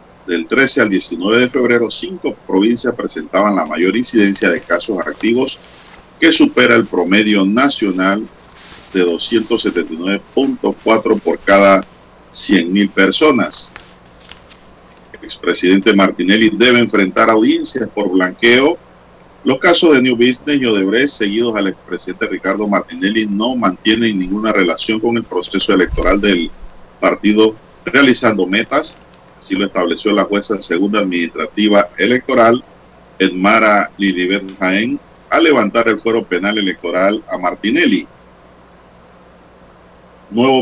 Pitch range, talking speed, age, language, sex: 90-115 Hz, 115 wpm, 50-69, Spanish, male